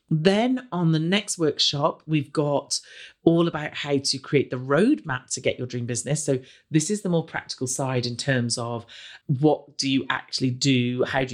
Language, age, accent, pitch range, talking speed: English, 40-59, British, 125-170 Hz, 190 wpm